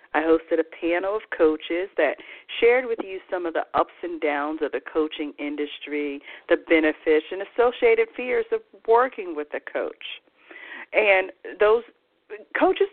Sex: female